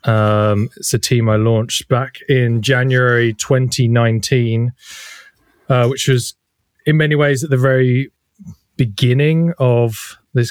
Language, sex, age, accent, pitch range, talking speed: English, male, 20-39, British, 105-130 Hz, 125 wpm